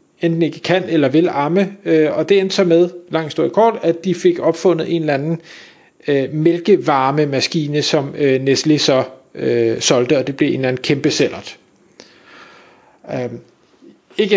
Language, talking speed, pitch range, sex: Danish, 165 wpm, 150-195 Hz, male